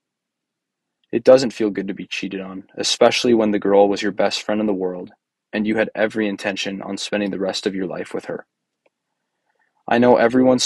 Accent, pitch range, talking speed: American, 100-115 Hz, 205 wpm